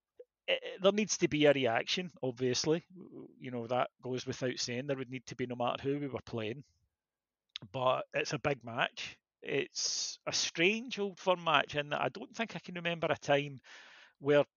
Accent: British